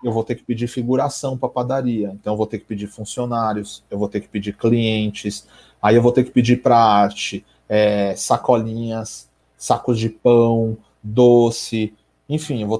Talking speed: 180 wpm